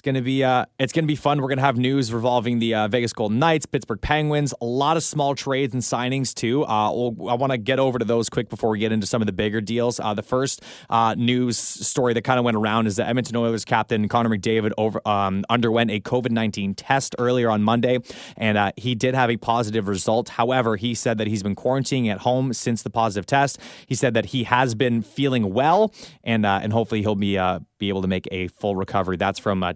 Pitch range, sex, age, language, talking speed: 105-130 Hz, male, 20-39, English, 250 wpm